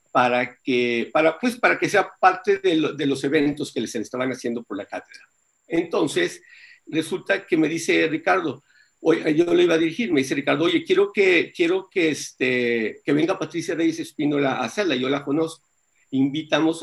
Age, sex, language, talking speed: 50-69, male, Spanish, 185 wpm